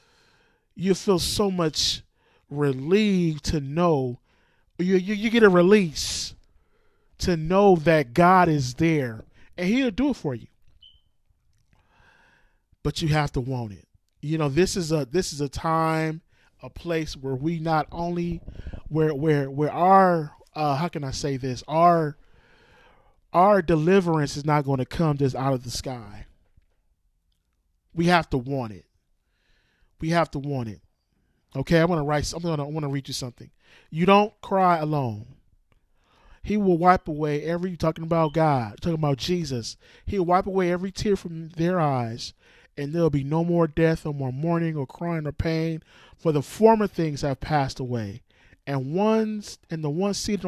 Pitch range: 135-175 Hz